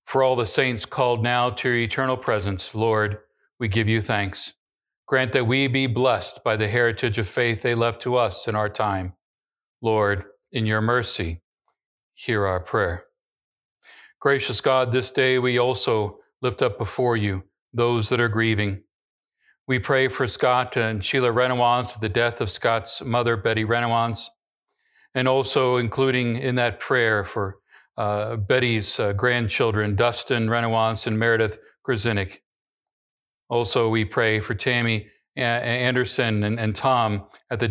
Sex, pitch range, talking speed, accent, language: male, 110-125 Hz, 150 wpm, American, English